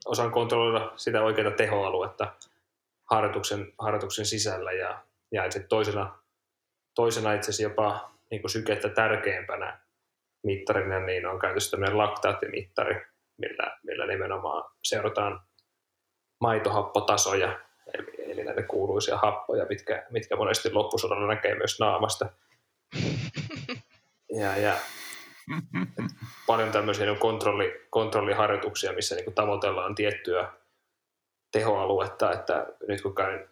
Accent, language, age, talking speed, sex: native, Finnish, 20-39, 100 wpm, male